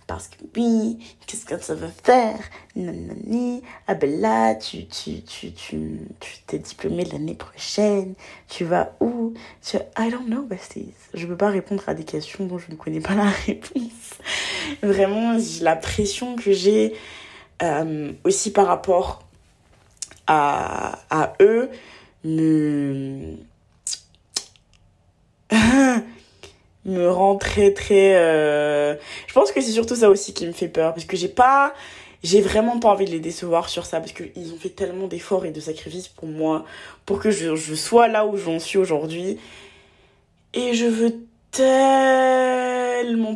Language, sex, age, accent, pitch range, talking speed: French, female, 20-39, French, 170-230 Hz, 155 wpm